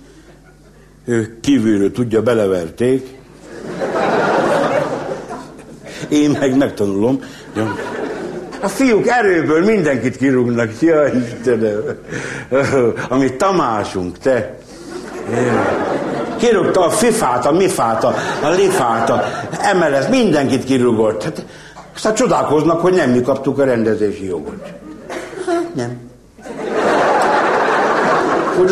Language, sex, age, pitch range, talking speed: Hungarian, male, 60-79, 120-165 Hz, 85 wpm